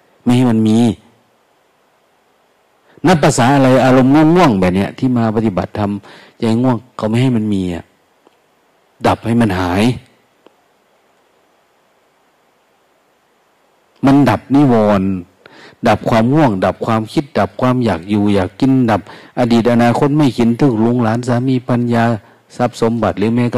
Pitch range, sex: 110-140 Hz, male